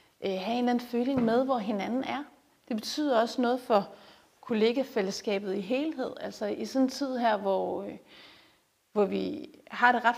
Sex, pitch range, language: female, 205-245 Hz, Danish